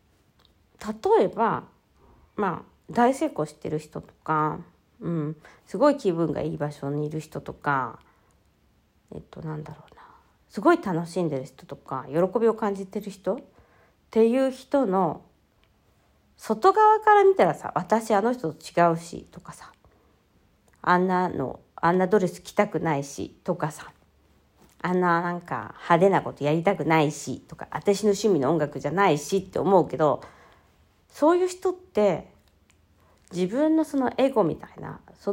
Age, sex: 40-59, female